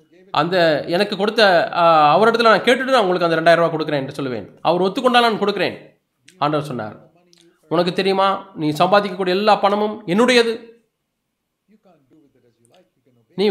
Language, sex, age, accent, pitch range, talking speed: Tamil, male, 30-49, native, 170-220 Hz, 125 wpm